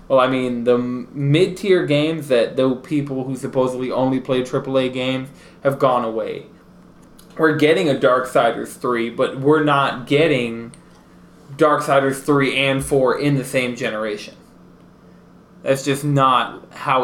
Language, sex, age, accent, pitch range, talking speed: English, male, 20-39, American, 120-150 Hz, 145 wpm